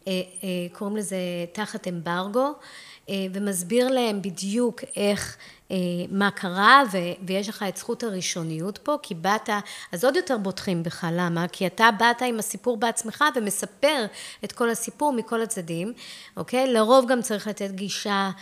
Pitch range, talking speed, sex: 185-230 Hz, 135 wpm, female